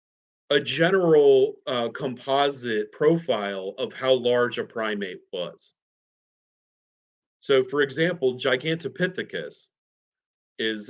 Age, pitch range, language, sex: 40-59, 115-165 Hz, English, male